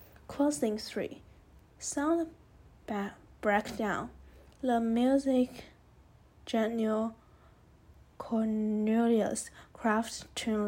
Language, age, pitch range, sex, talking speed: English, 10-29, 210-240 Hz, female, 55 wpm